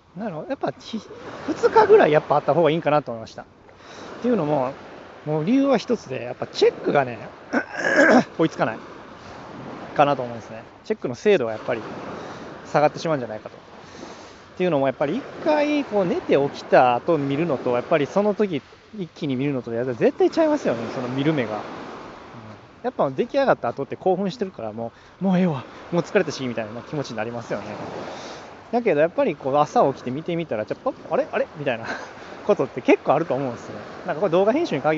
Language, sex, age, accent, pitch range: Japanese, male, 20-39, native, 125-200 Hz